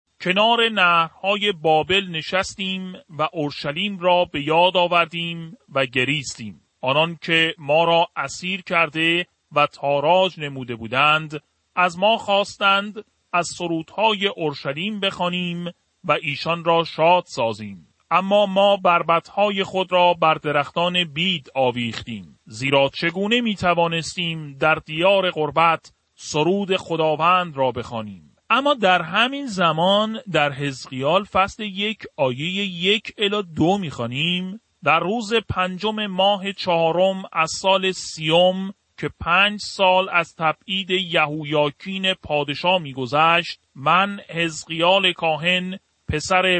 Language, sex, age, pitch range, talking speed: Persian, male, 40-59, 155-190 Hz, 110 wpm